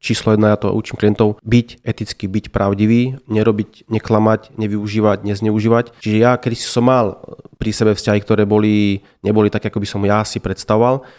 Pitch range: 105-120 Hz